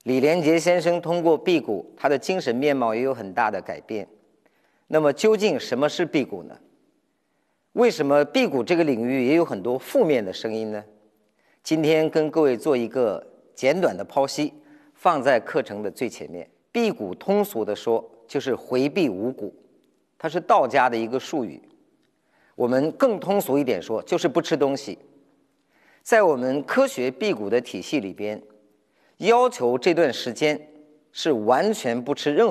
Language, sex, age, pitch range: Chinese, male, 50-69, 125-180 Hz